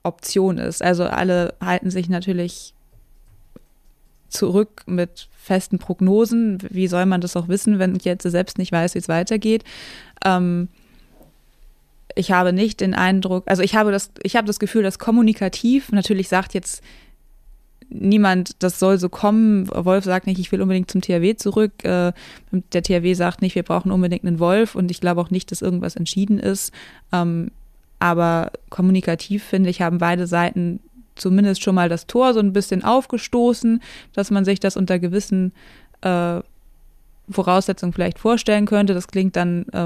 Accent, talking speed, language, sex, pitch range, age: German, 160 wpm, German, female, 175-200 Hz, 20-39